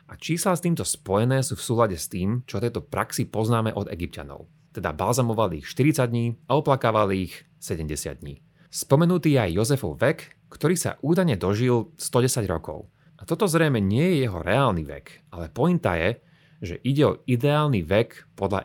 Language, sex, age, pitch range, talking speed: Slovak, male, 30-49, 100-145 Hz, 175 wpm